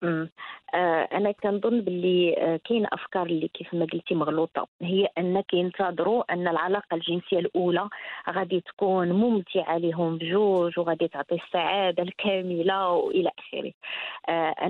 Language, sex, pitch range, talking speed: Arabic, female, 175-225 Hz, 125 wpm